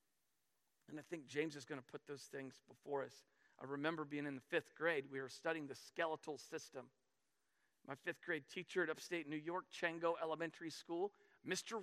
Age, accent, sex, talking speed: 40-59, American, male, 190 wpm